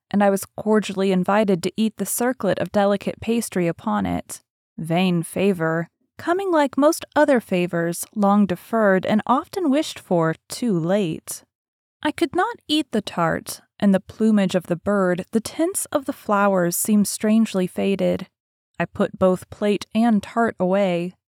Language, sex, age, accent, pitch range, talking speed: English, female, 20-39, American, 185-245 Hz, 160 wpm